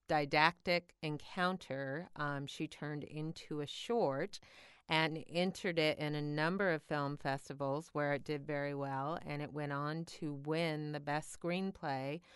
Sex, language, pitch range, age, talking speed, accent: female, English, 145-165 Hz, 40-59, 150 wpm, American